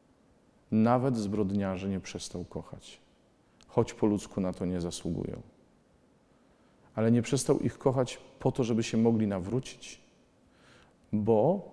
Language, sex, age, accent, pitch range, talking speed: Polish, male, 40-59, native, 105-140 Hz, 125 wpm